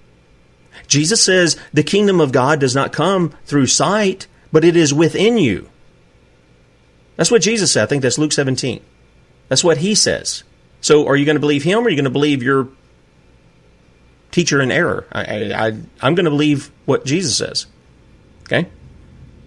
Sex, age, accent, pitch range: male, 40-59, American, 110-150 Hz